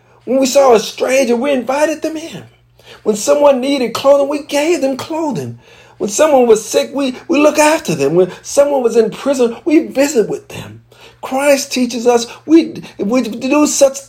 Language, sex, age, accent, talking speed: English, male, 50-69, American, 185 wpm